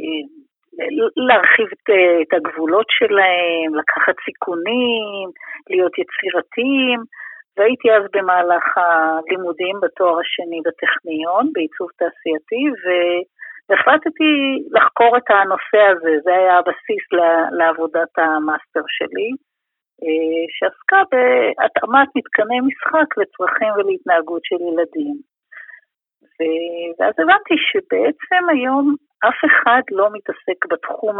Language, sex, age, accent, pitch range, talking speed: Hebrew, female, 50-69, native, 175-295 Hz, 85 wpm